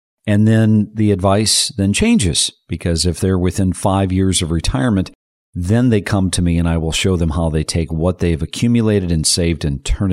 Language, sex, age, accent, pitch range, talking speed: English, male, 50-69, American, 85-105 Hz, 200 wpm